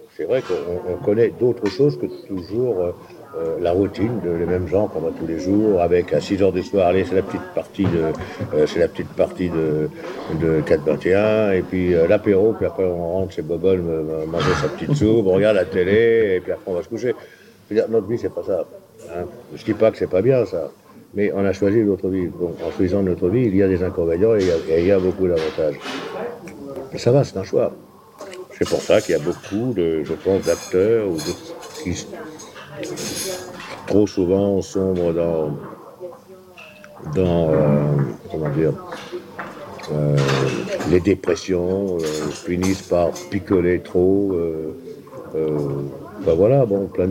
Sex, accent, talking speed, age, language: male, French, 175 wpm, 60-79, French